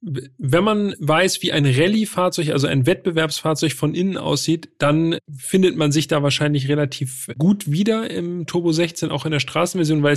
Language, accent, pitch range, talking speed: German, German, 140-180 Hz, 170 wpm